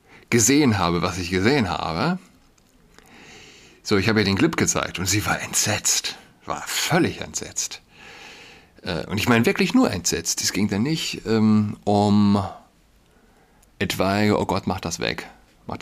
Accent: German